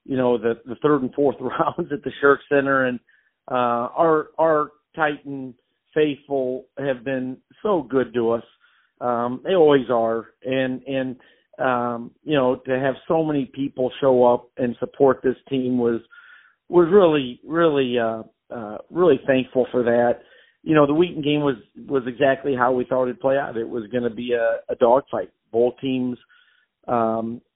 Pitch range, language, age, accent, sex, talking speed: 125-150 Hz, English, 50-69, American, male, 170 wpm